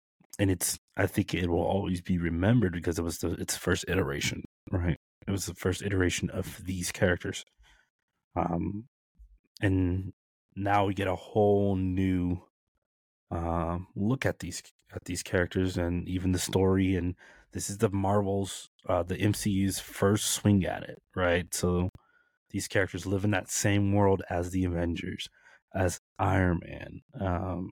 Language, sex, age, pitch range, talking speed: English, male, 20-39, 90-105 Hz, 155 wpm